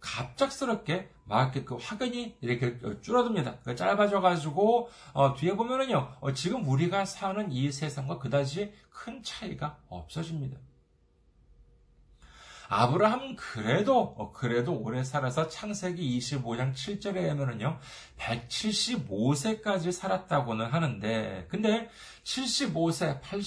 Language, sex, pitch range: Korean, male, 125-195 Hz